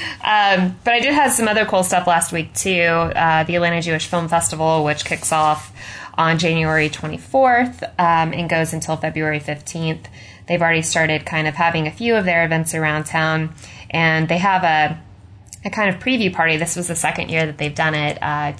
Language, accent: English, American